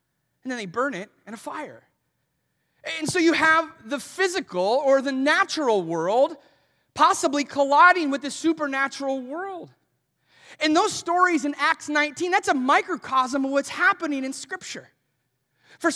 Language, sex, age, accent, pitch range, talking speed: English, male, 30-49, American, 265-340 Hz, 145 wpm